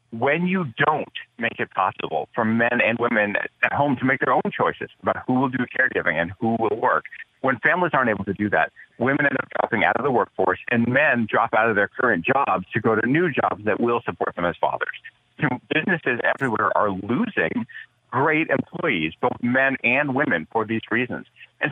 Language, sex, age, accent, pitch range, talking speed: English, male, 40-59, American, 115-145 Hz, 205 wpm